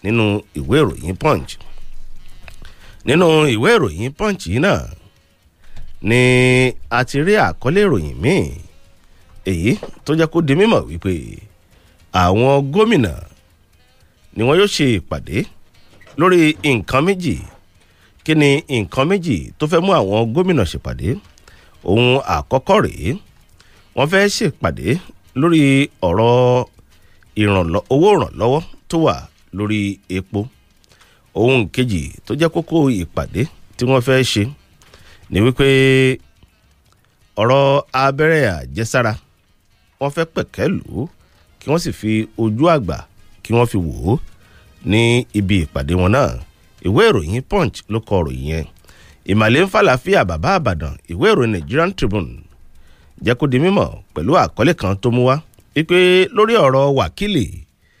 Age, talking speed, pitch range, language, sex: 50-69, 120 wpm, 90-135 Hz, English, male